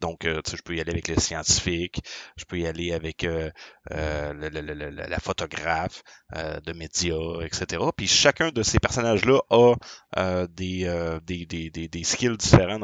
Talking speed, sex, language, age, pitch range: 195 wpm, male, French, 30-49, 85-110 Hz